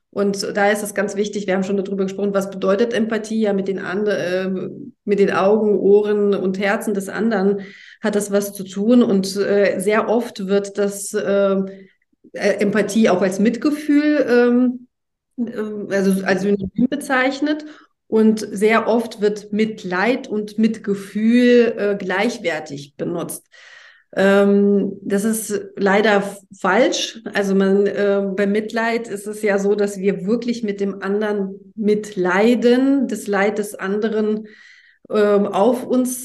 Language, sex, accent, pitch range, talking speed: German, female, German, 195-225 Hz, 145 wpm